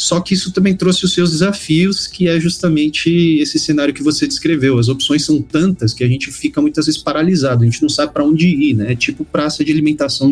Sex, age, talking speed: male, 40-59, 235 wpm